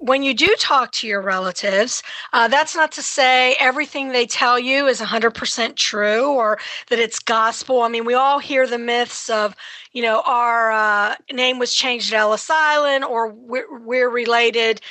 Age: 50-69